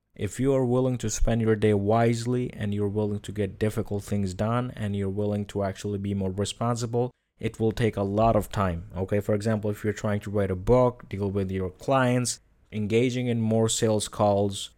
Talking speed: 205 wpm